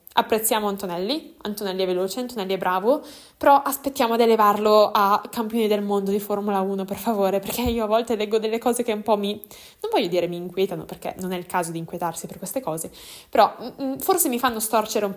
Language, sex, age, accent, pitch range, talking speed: Italian, female, 10-29, native, 195-245 Hz, 220 wpm